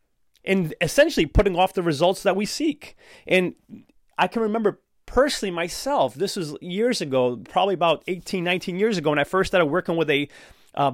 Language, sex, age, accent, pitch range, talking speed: English, male, 30-49, American, 170-220 Hz, 180 wpm